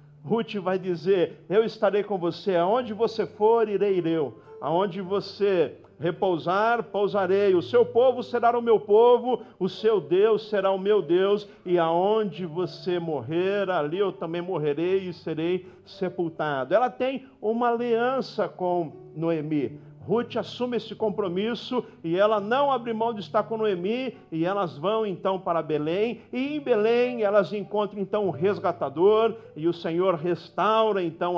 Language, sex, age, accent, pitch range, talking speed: Portuguese, male, 50-69, Brazilian, 170-225 Hz, 150 wpm